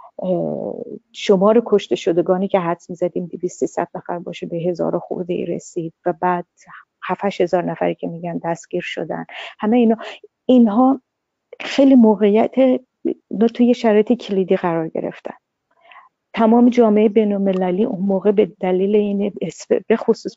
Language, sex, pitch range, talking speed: Persian, female, 175-230 Hz, 125 wpm